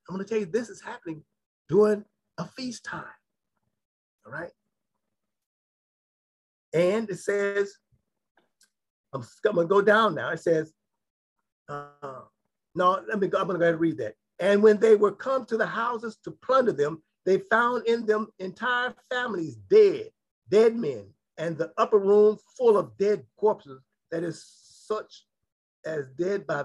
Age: 50-69